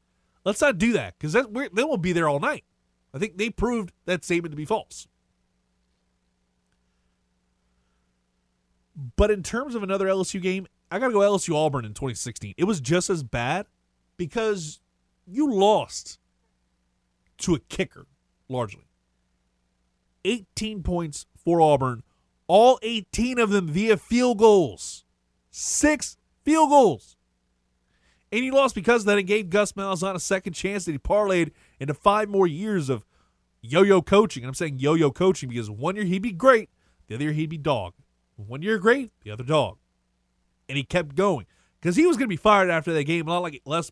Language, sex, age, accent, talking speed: English, male, 30-49, American, 170 wpm